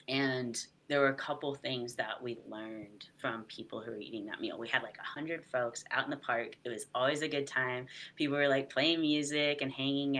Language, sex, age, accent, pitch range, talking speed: English, female, 30-49, American, 120-145 Hz, 230 wpm